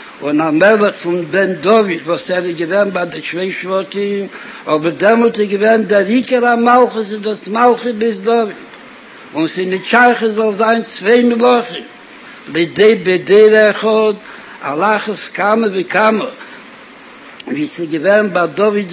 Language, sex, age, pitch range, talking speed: Hebrew, male, 60-79, 195-235 Hz, 100 wpm